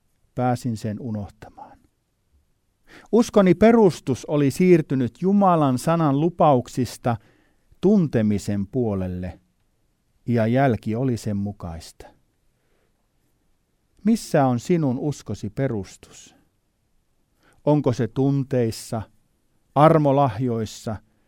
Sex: male